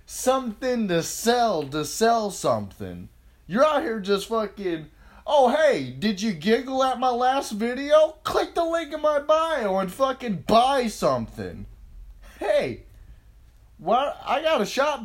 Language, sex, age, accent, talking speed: English, male, 20-39, American, 140 wpm